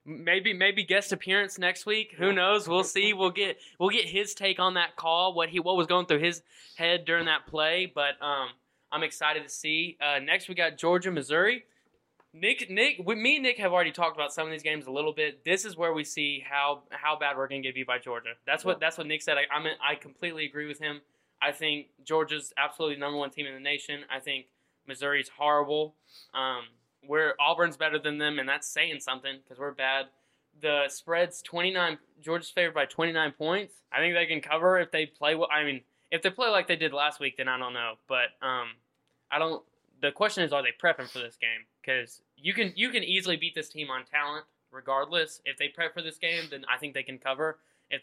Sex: male